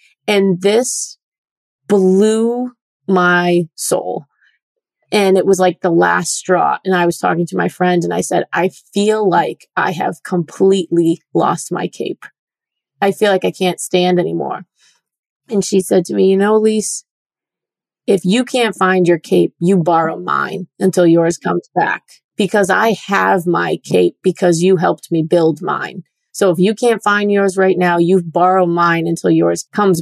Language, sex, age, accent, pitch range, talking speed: English, female, 30-49, American, 175-200 Hz, 165 wpm